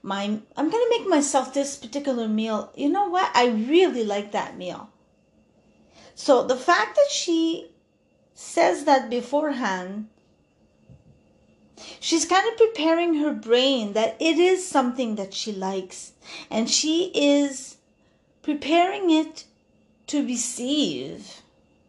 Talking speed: 125 wpm